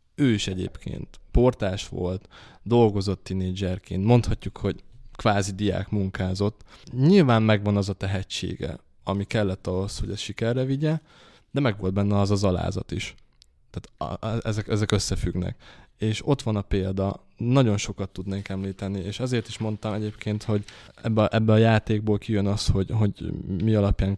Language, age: Hungarian, 20-39